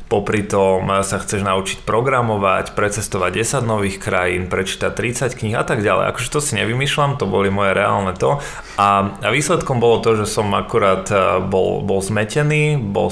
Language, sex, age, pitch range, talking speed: Slovak, male, 30-49, 95-115 Hz, 170 wpm